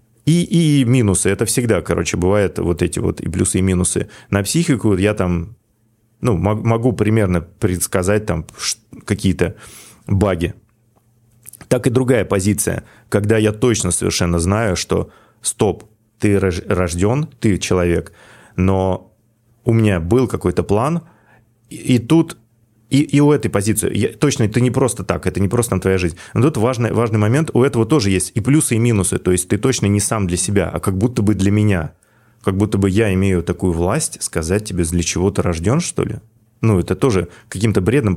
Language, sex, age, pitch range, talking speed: Russian, male, 30-49, 90-115 Hz, 175 wpm